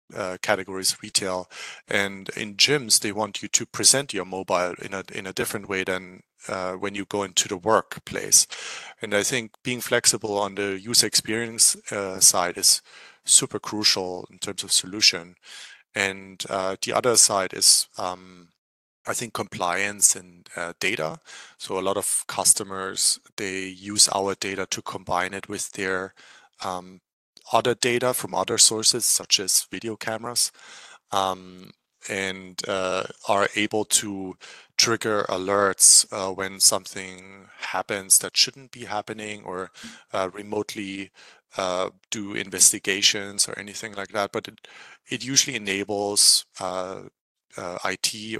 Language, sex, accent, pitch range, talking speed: English, male, German, 95-105 Hz, 145 wpm